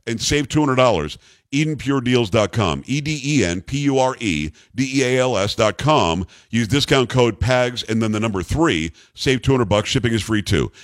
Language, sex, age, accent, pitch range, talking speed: English, male, 50-69, American, 110-135 Hz, 115 wpm